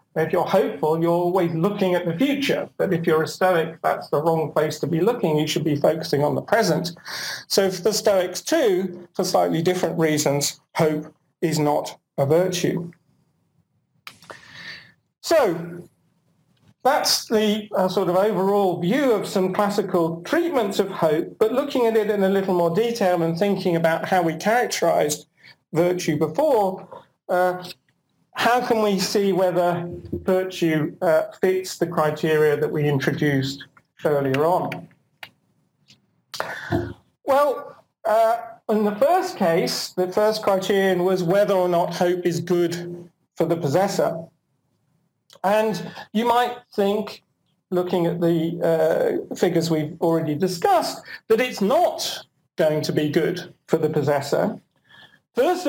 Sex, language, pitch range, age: male, English, 160-205 Hz, 40-59